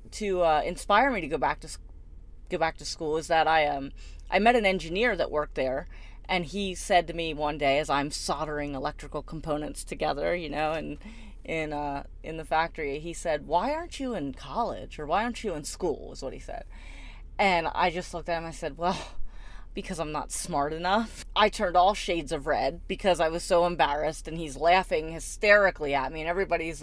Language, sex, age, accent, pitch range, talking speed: English, female, 30-49, American, 155-210 Hz, 215 wpm